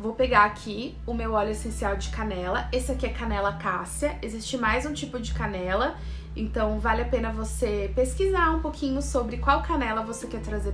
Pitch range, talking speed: 210-265 Hz, 190 wpm